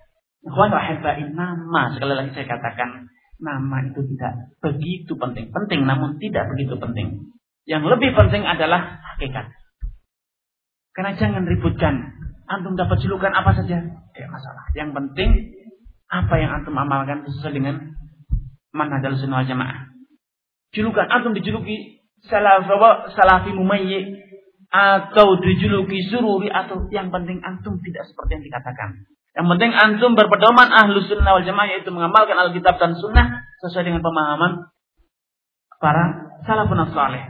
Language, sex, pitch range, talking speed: Indonesian, male, 140-195 Hz, 120 wpm